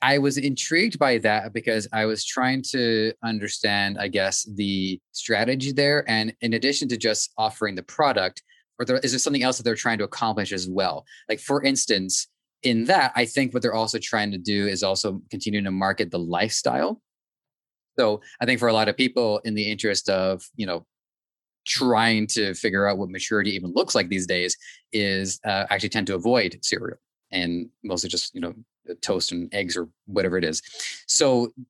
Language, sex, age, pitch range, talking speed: English, male, 20-39, 95-120 Hz, 190 wpm